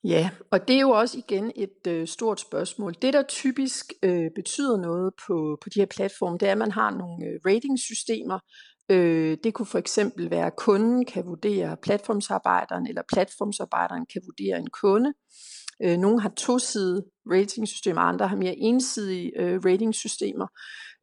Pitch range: 175-220 Hz